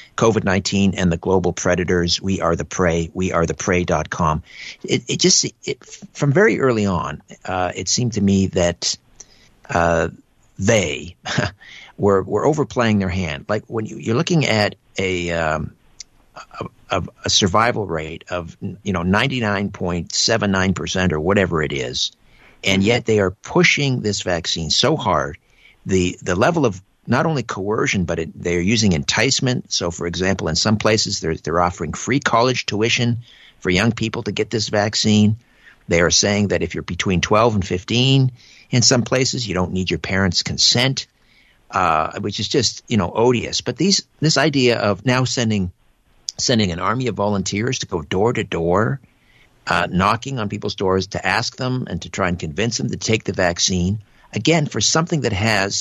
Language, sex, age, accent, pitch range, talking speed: English, male, 50-69, American, 90-120 Hz, 170 wpm